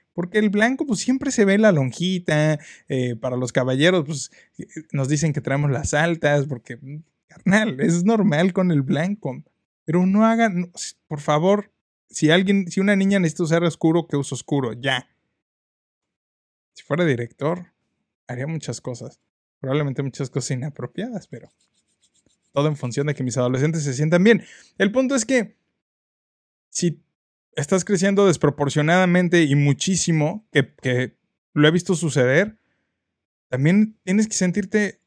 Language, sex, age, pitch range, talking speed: Spanish, male, 20-39, 135-195 Hz, 145 wpm